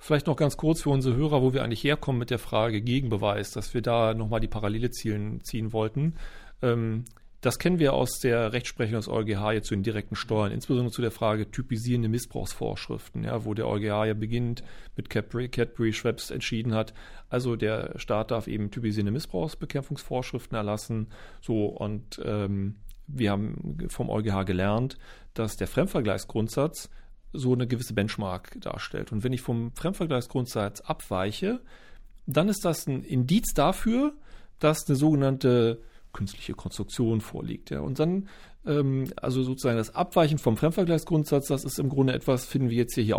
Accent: German